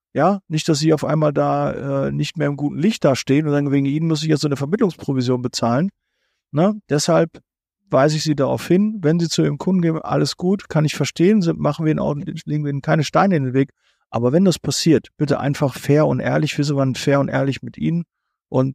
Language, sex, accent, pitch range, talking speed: German, male, German, 120-155 Hz, 235 wpm